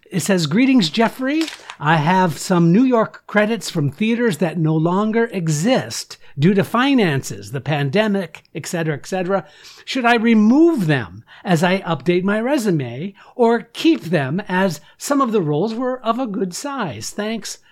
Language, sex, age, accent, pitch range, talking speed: English, male, 60-79, American, 155-195 Hz, 170 wpm